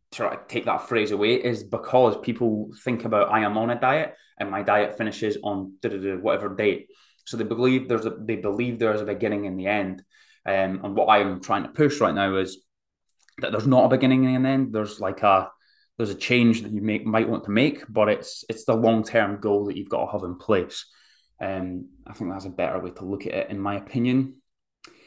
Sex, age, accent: male, 20-39, British